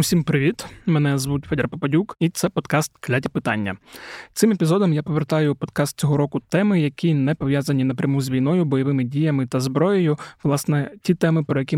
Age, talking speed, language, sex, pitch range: 20-39, 175 wpm, Ukrainian, male, 130-155 Hz